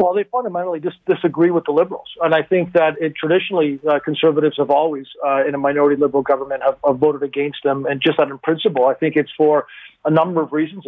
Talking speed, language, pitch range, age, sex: 220 wpm, English, 140-155 Hz, 40-59, male